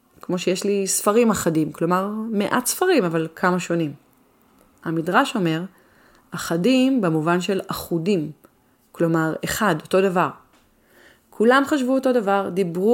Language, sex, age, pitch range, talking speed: Hebrew, female, 30-49, 165-215 Hz, 120 wpm